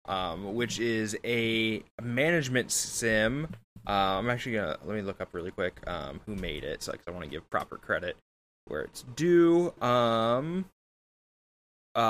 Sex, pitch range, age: male, 100-125 Hz, 20-39